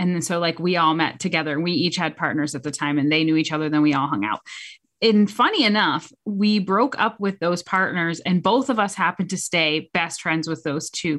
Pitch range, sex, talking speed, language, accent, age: 170-220 Hz, female, 250 wpm, English, American, 30-49